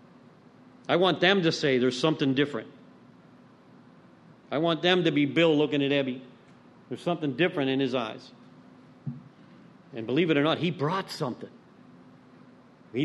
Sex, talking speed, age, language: male, 145 wpm, 50-69, English